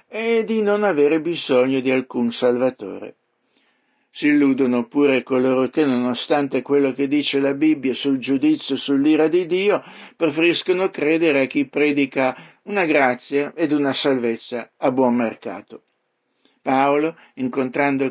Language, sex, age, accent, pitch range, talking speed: Italian, male, 60-79, native, 135-180 Hz, 135 wpm